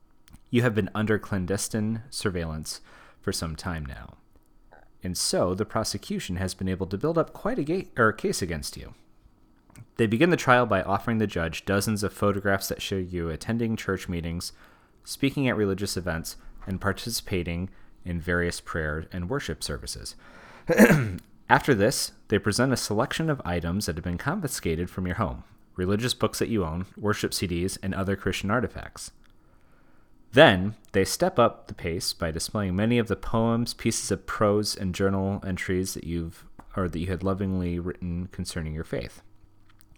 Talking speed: 165 wpm